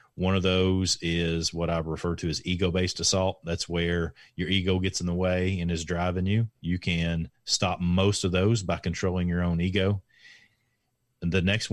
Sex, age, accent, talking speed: male, 40-59, American, 185 wpm